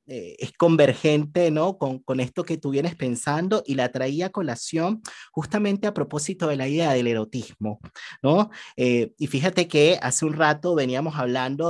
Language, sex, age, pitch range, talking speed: Spanish, male, 30-49, 125-155 Hz, 165 wpm